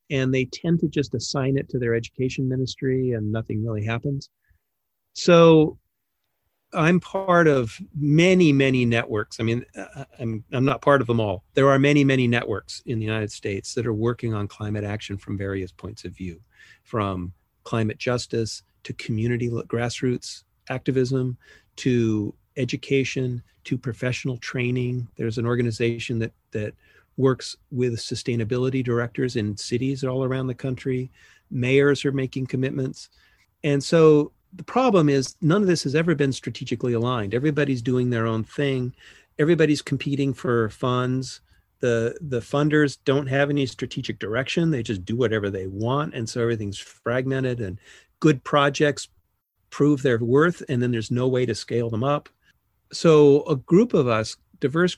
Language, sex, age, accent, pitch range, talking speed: English, male, 40-59, American, 115-140 Hz, 155 wpm